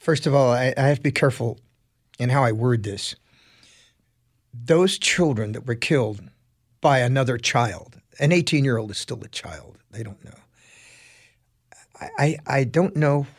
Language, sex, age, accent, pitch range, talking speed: English, male, 50-69, American, 120-145 Hz, 160 wpm